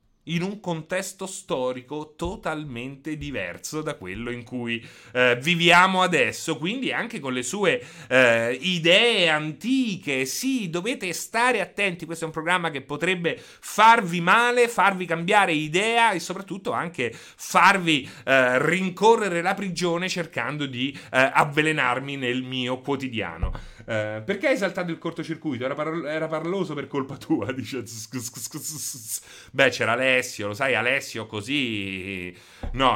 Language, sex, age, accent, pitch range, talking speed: Italian, male, 30-49, native, 125-175 Hz, 130 wpm